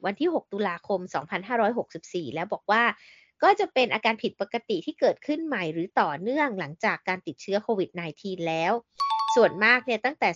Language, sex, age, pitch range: Thai, female, 20-39, 200-275 Hz